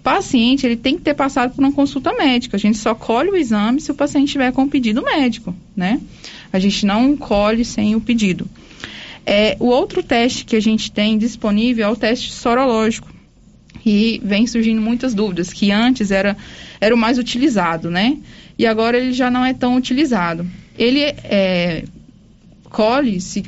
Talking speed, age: 175 wpm, 20-39